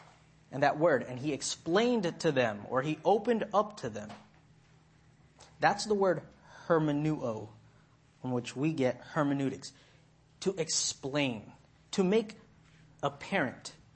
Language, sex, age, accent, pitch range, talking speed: English, male, 30-49, American, 135-185 Hz, 125 wpm